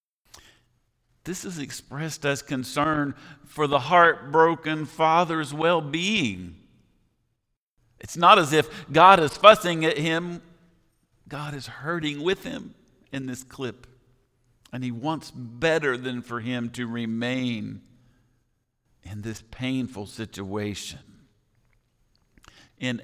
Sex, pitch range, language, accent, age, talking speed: male, 120-160 Hz, English, American, 50-69, 105 wpm